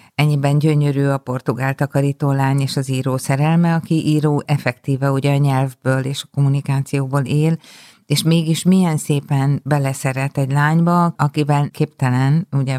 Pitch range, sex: 135-155 Hz, female